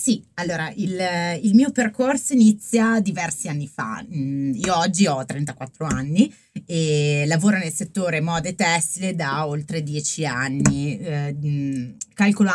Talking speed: 125 wpm